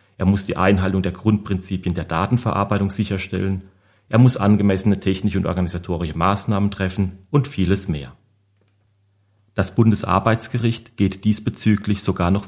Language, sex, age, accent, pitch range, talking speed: German, male, 40-59, German, 95-110 Hz, 125 wpm